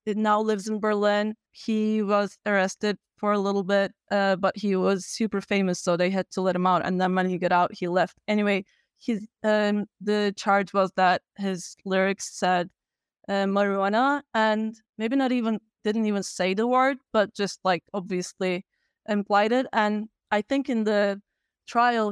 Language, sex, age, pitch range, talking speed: English, female, 20-39, 195-220 Hz, 175 wpm